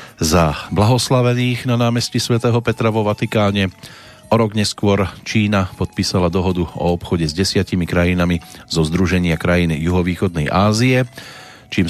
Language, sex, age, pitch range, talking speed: Slovak, male, 40-59, 85-115 Hz, 125 wpm